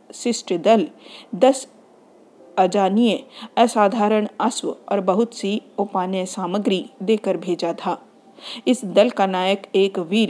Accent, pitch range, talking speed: native, 185-230 Hz, 115 wpm